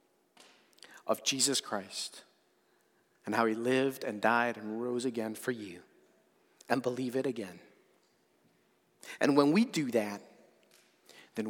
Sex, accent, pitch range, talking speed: male, American, 115-185 Hz, 125 wpm